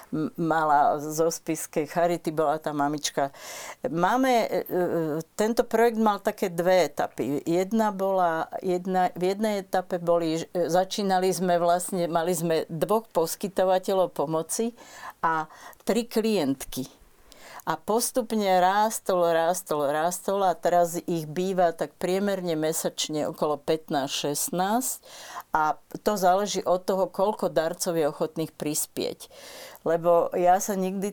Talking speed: 115 wpm